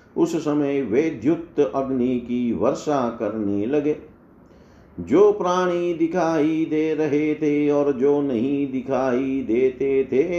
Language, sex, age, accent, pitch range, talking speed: Hindi, male, 50-69, native, 120-155 Hz, 115 wpm